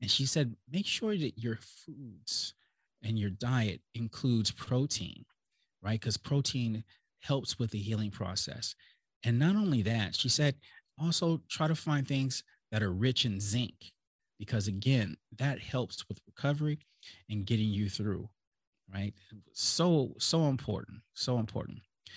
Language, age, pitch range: English, 30-49, 105-145 Hz